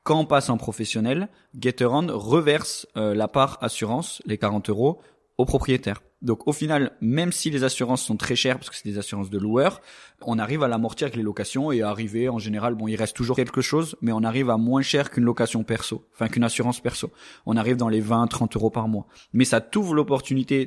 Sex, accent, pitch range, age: male, French, 110-130 Hz, 20-39